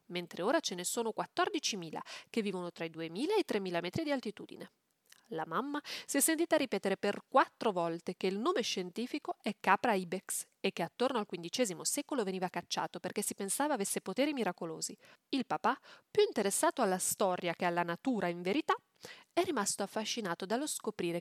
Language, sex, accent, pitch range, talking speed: Italian, female, native, 185-270 Hz, 180 wpm